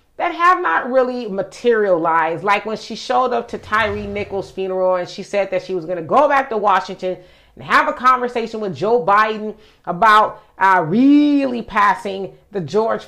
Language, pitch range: English, 200-260 Hz